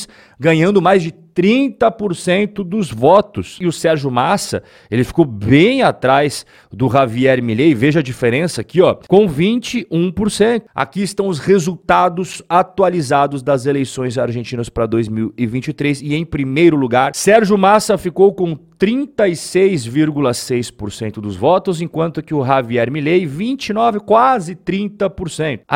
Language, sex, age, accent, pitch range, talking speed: Portuguese, male, 40-59, Brazilian, 145-195 Hz, 125 wpm